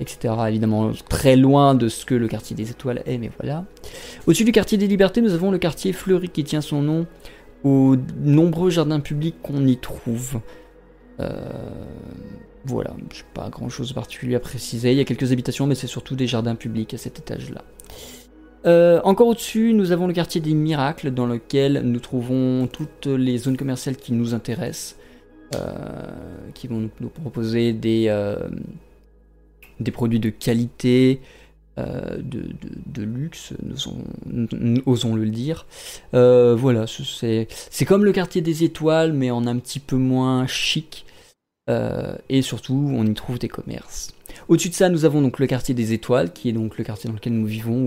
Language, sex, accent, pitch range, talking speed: French, male, French, 115-155 Hz, 175 wpm